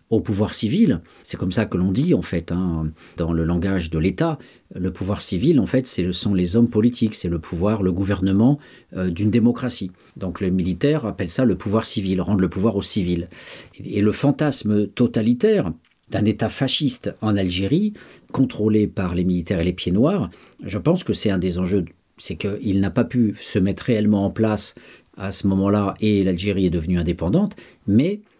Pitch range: 90-115 Hz